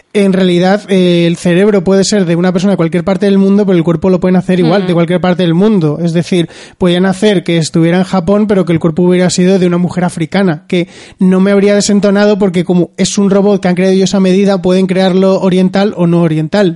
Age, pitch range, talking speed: 20-39, 175-195 Hz, 235 wpm